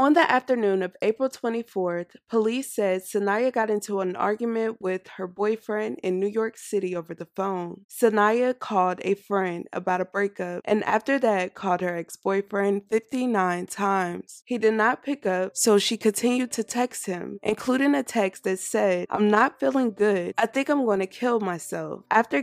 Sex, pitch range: female, 185-225 Hz